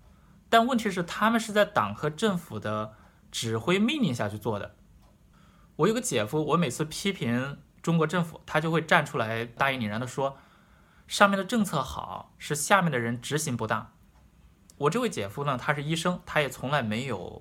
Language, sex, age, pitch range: Chinese, male, 20-39, 125-190 Hz